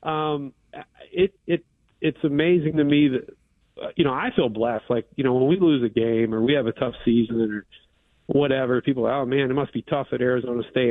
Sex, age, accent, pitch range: male, 40-59, American, 120-150 Hz